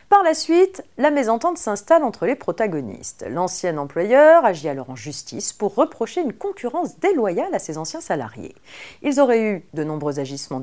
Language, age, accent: French, 40-59, French